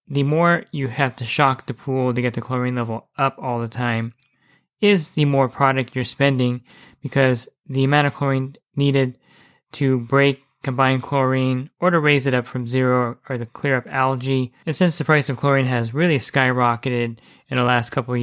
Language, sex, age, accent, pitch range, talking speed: English, male, 20-39, American, 125-145 Hz, 195 wpm